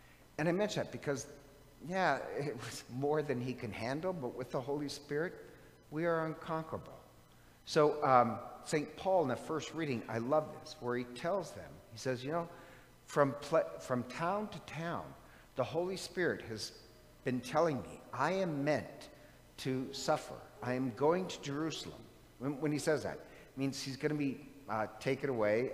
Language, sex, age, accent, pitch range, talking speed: English, male, 60-79, American, 120-155 Hz, 175 wpm